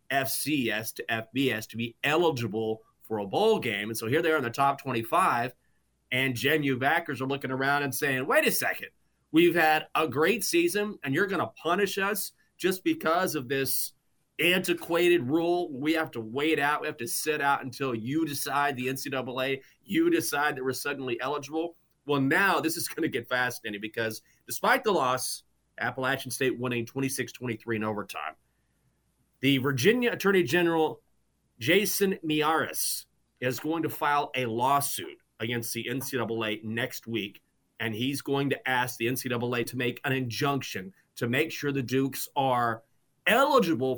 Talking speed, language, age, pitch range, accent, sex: 165 wpm, English, 30-49, 120-165 Hz, American, male